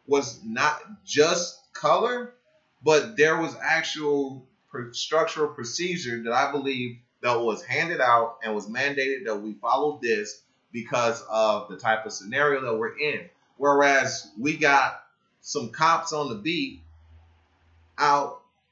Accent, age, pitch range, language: American, 30-49, 130-195 Hz, English